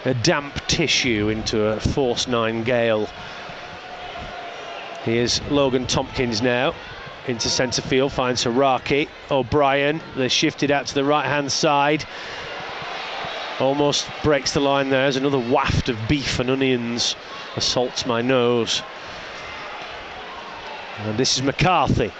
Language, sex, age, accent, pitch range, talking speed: English, male, 40-59, British, 130-175 Hz, 115 wpm